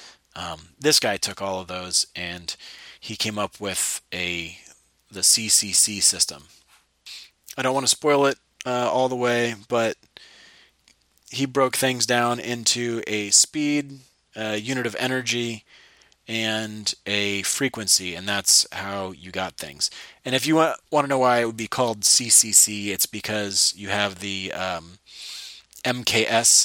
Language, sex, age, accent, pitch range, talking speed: English, male, 30-49, American, 90-115 Hz, 150 wpm